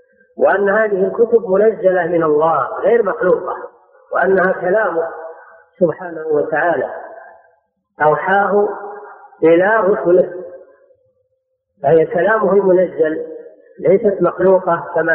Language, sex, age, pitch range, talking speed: Arabic, female, 40-59, 165-240 Hz, 85 wpm